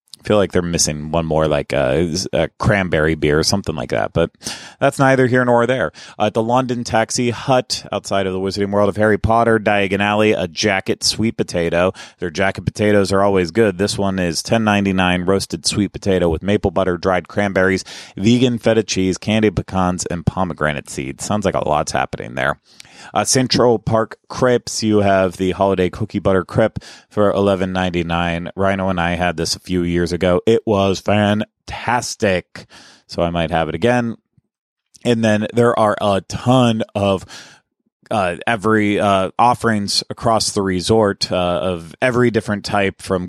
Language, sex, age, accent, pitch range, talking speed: English, male, 30-49, American, 90-110 Hz, 175 wpm